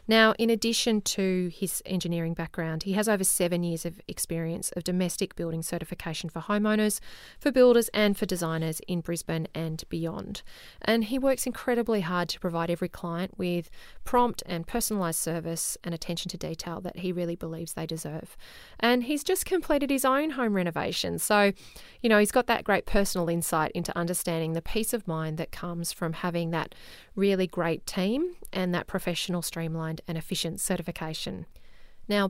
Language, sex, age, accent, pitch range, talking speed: English, female, 30-49, Australian, 165-215 Hz, 170 wpm